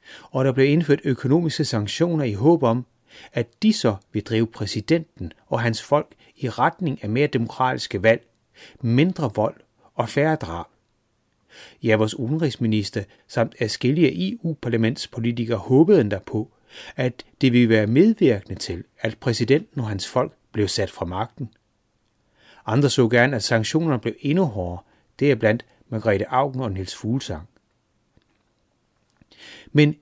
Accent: native